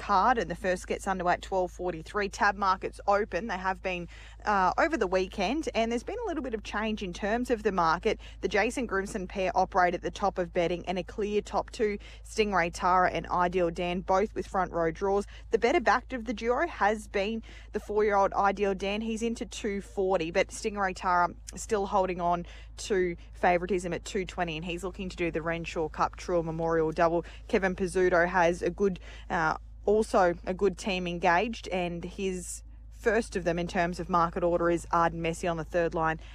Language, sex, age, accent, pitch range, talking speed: English, female, 20-39, Australian, 175-205 Hz, 200 wpm